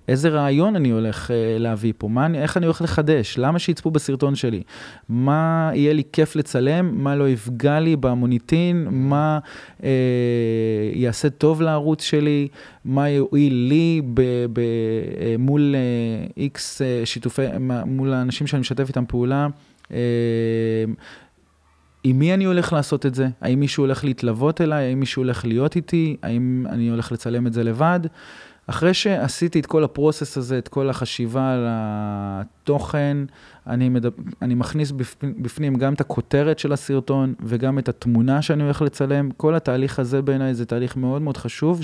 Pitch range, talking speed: 120-150 Hz, 150 wpm